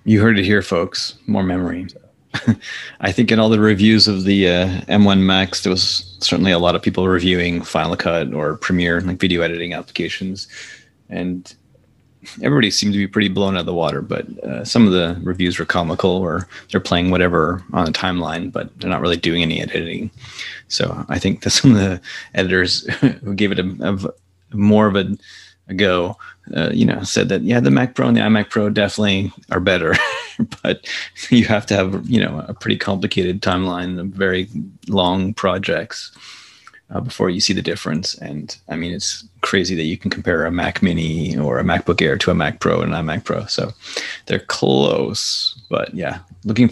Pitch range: 90-100 Hz